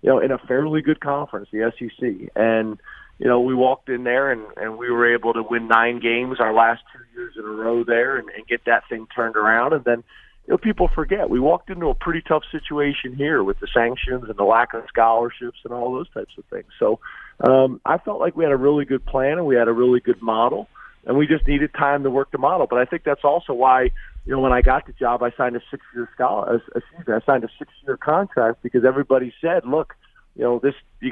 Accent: American